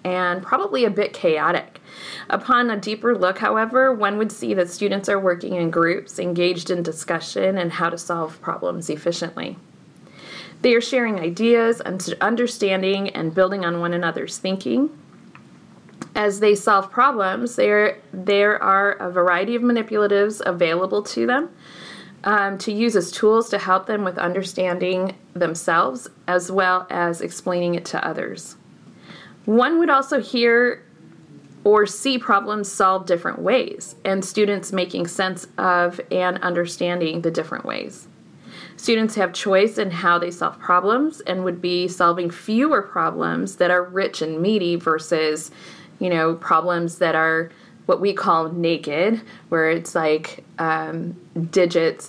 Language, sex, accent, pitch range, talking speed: English, female, American, 170-210 Hz, 145 wpm